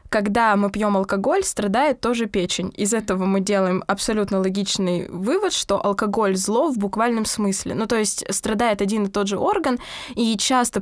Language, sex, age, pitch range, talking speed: Russian, female, 20-39, 190-235 Hz, 170 wpm